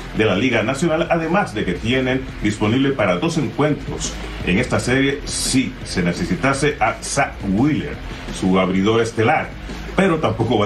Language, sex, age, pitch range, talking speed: Spanish, male, 40-59, 100-140 Hz, 150 wpm